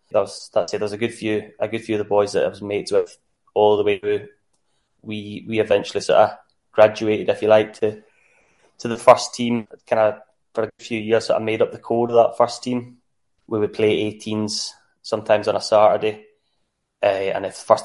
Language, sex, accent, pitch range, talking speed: English, male, British, 105-115 Hz, 220 wpm